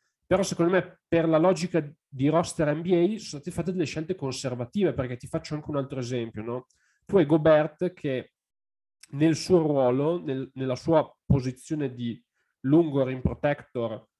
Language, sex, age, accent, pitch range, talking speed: Italian, male, 30-49, native, 125-160 Hz, 155 wpm